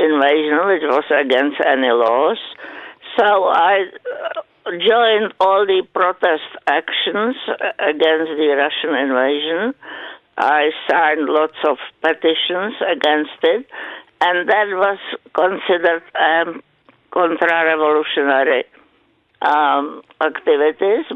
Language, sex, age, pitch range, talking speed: English, female, 60-79, 150-225 Hz, 90 wpm